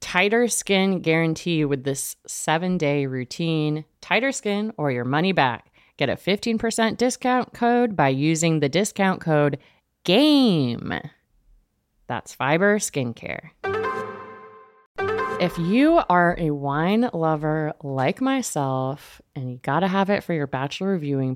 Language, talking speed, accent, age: English, 125 wpm, American, 30-49